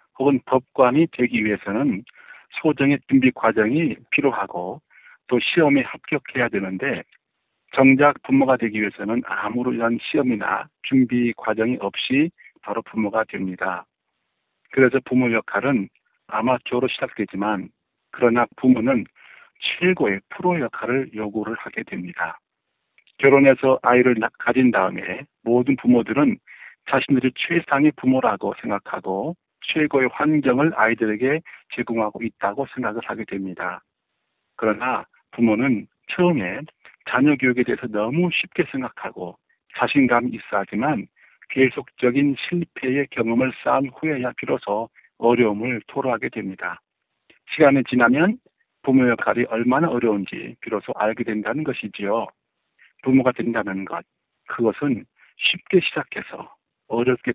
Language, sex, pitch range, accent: Korean, male, 115-140 Hz, native